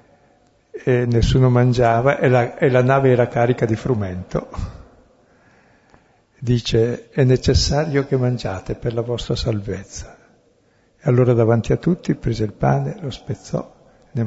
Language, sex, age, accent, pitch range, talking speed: Italian, male, 60-79, native, 110-135 Hz, 135 wpm